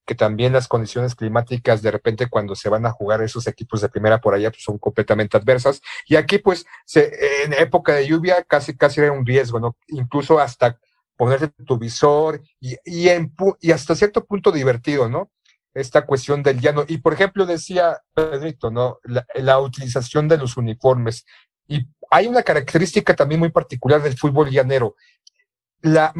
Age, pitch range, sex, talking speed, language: 50-69, 130-165 Hz, male, 180 wpm, Spanish